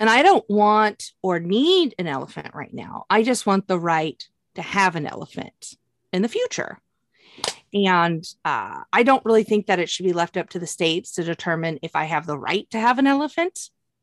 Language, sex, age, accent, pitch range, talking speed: English, female, 30-49, American, 185-300 Hz, 205 wpm